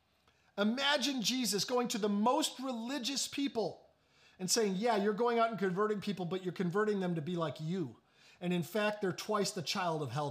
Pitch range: 195-265 Hz